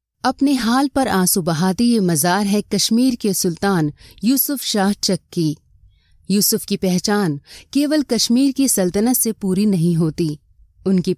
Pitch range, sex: 180-245 Hz, female